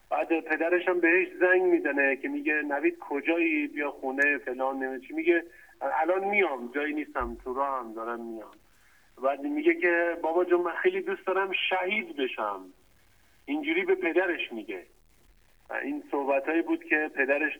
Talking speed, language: 150 wpm, English